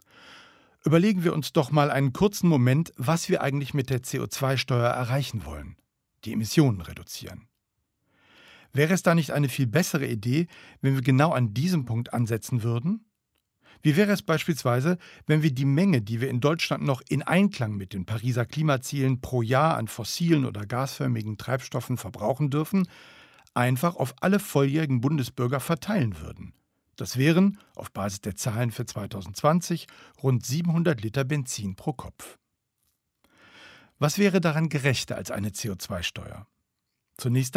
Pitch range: 115-160 Hz